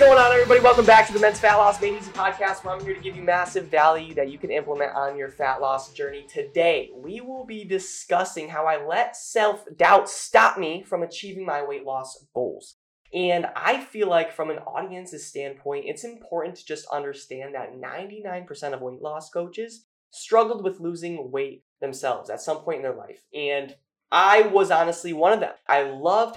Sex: male